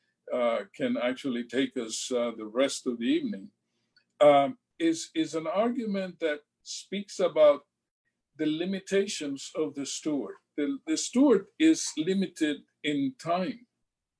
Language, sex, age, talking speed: English, male, 60-79, 130 wpm